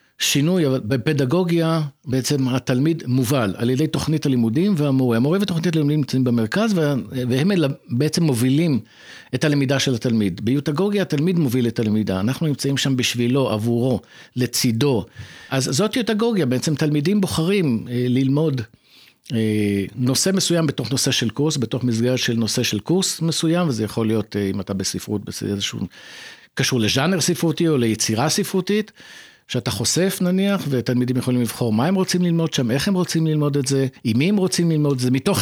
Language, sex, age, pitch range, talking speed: Hebrew, male, 50-69, 125-170 Hz, 155 wpm